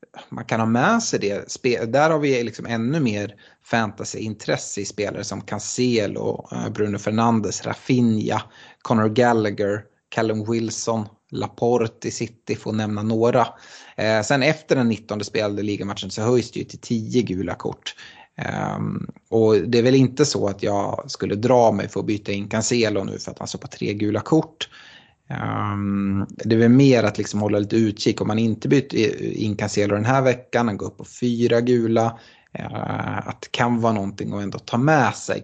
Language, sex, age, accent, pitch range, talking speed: Swedish, male, 30-49, native, 105-120 Hz, 175 wpm